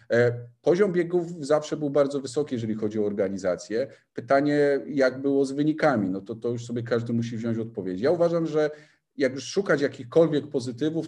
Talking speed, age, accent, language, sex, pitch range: 175 wpm, 40-59, native, Polish, male, 120-140 Hz